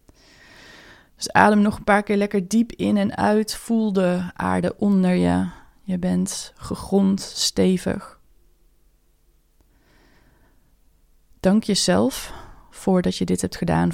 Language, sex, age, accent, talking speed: Dutch, female, 20-39, Dutch, 115 wpm